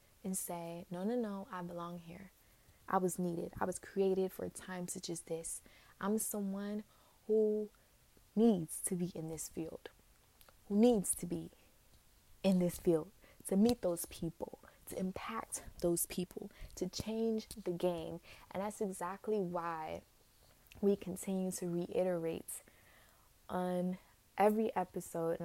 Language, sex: English, female